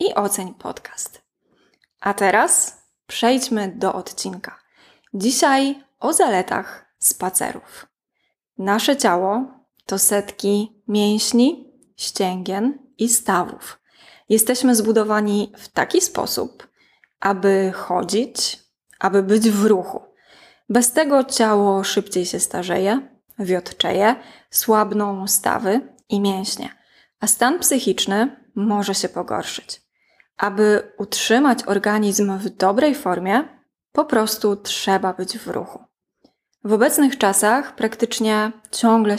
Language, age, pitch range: Polish, 20-39, 200-255 Hz